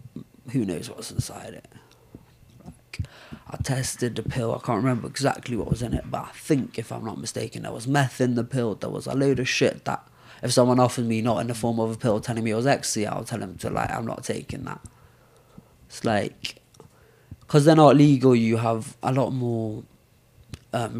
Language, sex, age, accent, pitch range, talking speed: English, male, 20-39, British, 115-130 Hz, 215 wpm